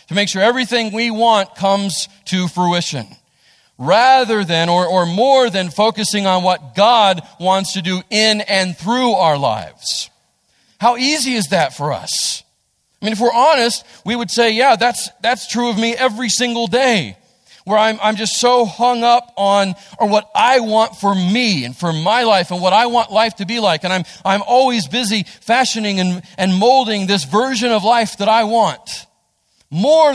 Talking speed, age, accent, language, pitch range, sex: 185 wpm, 40-59, American, English, 175-230 Hz, male